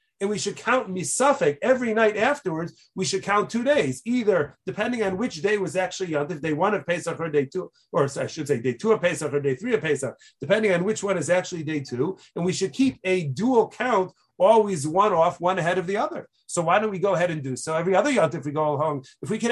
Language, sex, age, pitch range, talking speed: English, male, 40-59, 175-215 Hz, 250 wpm